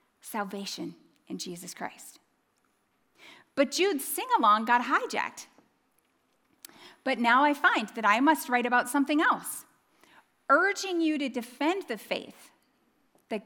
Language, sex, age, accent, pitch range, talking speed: English, female, 40-59, American, 225-330 Hz, 120 wpm